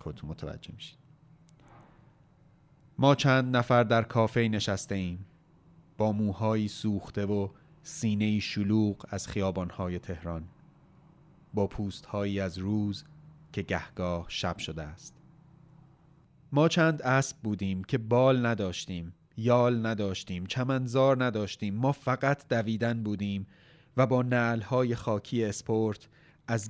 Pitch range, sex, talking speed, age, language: 100-125 Hz, male, 110 wpm, 30-49, Persian